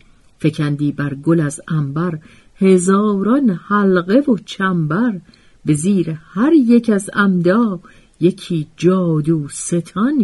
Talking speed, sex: 105 wpm, female